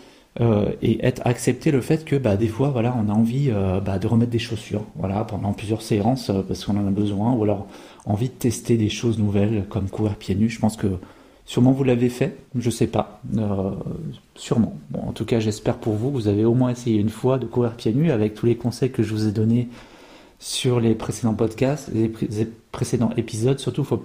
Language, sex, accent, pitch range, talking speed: French, male, French, 110-130 Hz, 230 wpm